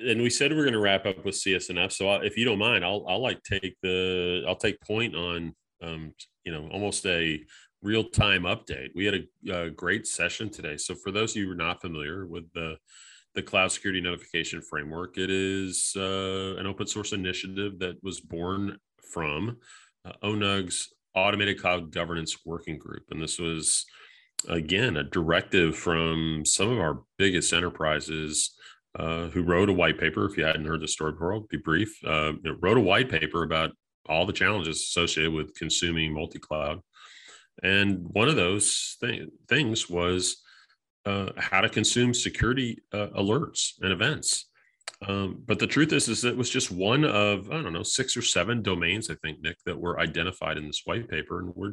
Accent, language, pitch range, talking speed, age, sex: American, English, 85-100 Hz, 190 wpm, 30-49, male